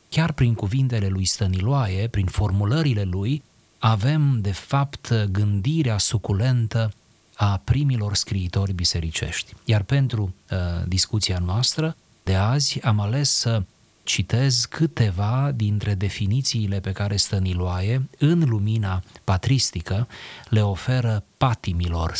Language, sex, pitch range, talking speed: Romanian, male, 95-130 Hz, 110 wpm